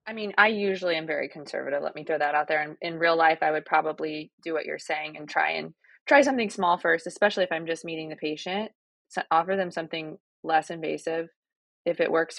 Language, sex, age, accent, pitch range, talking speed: English, female, 20-39, American, 160-190 Hz, 230 wpm